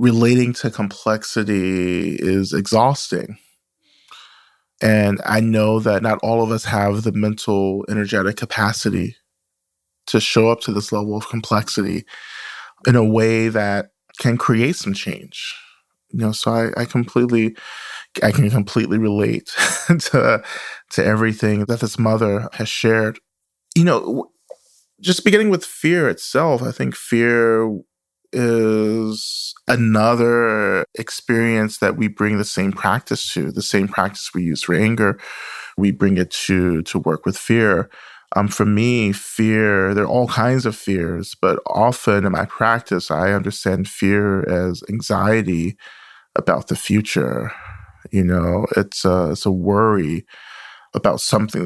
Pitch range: 100-115 Hz